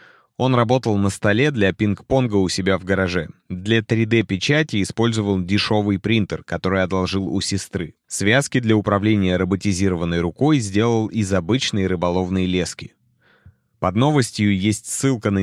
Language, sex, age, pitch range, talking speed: Russian, male, 30-49, 90-115 Hz, 130 wpm